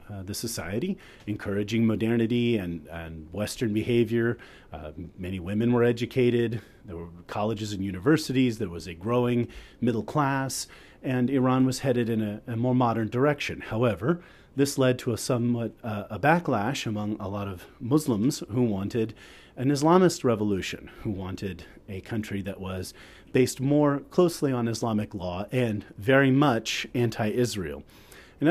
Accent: American